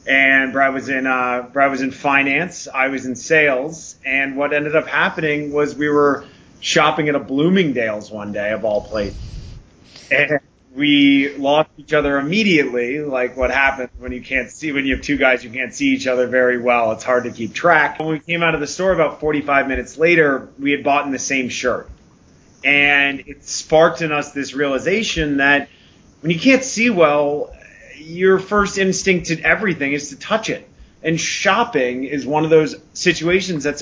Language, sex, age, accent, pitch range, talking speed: English, male, 30-49, American, 135-165 Hz, 190 wpm